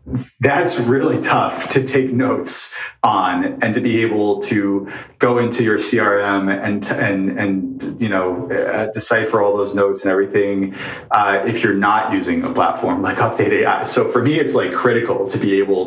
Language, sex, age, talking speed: English, male, 30-49, 180 wpm